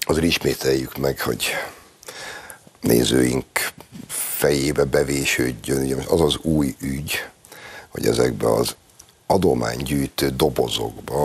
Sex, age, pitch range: male, 60-79, 70-95 Hz